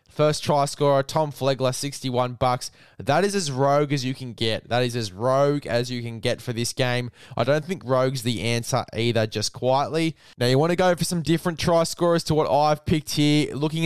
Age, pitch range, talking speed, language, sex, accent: 10-29, 120-145 Hz, 215 wpm, English, male, Australian